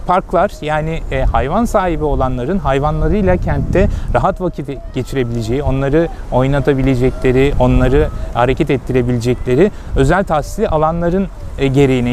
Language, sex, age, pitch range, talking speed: Turkish, male, 30-49, 130-170 Hz, 95 wpm